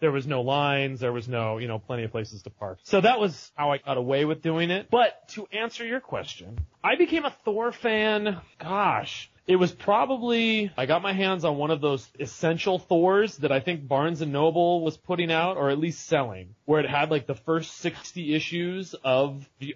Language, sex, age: English, male, 30-49